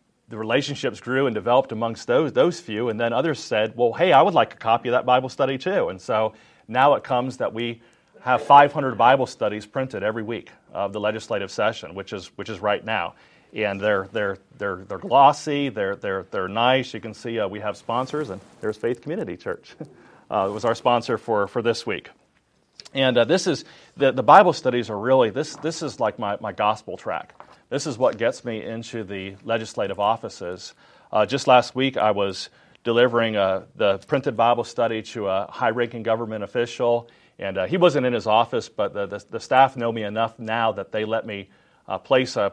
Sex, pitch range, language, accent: male, 110-130 Hz, English, American